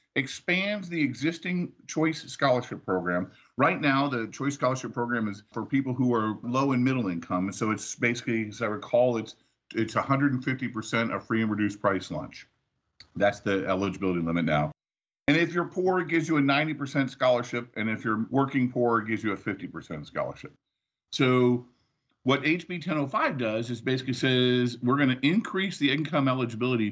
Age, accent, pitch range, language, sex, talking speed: 50-69, American, 110-145 Hz, English, male, 170 wpm